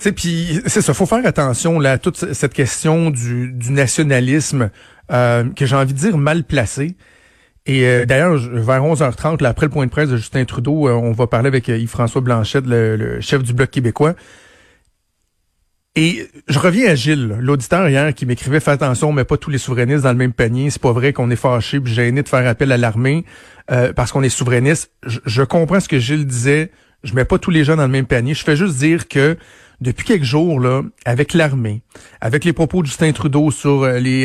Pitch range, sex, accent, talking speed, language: 130-165 Hz, male, Canadian, 220 wpm, French